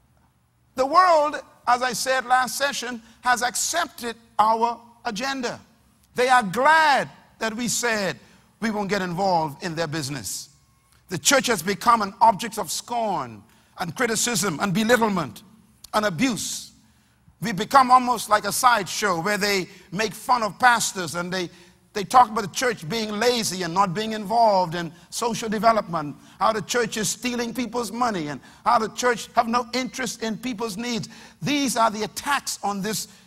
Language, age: English, 50-69